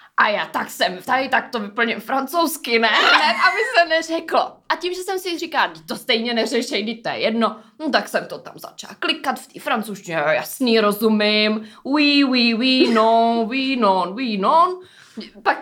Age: 20-39